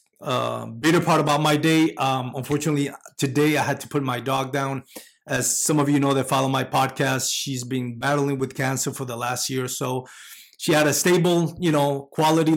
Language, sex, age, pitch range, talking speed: English, male, 30-49, 125-150 Hz, 205 wpm